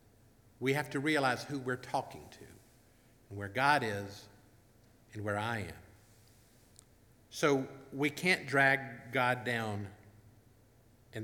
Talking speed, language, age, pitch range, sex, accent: 125 wpm, English, 50-69, 110-130 Hz, male, American